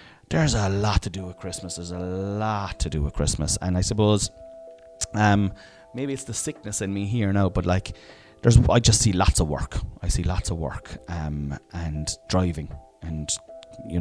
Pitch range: 85-125 Hz